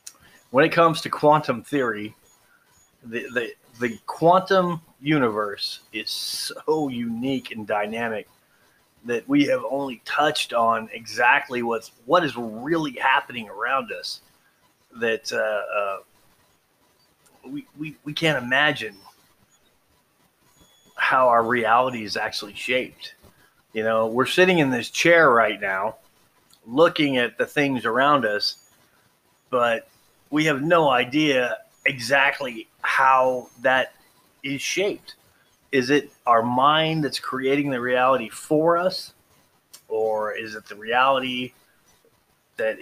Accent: American